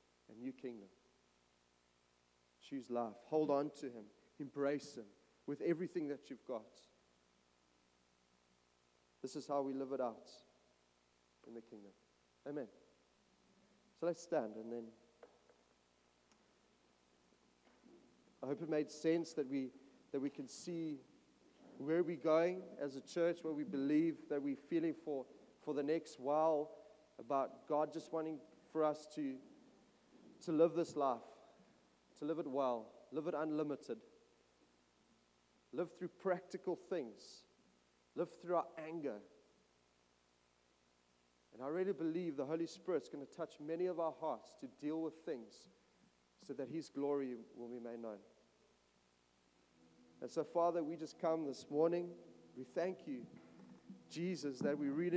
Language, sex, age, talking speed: English, male, 40-59, 140 wpm